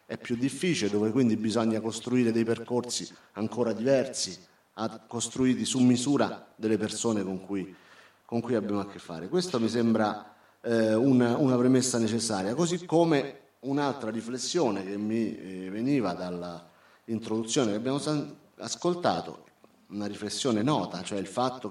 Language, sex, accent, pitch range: Italian, male, native, 105-125 Hz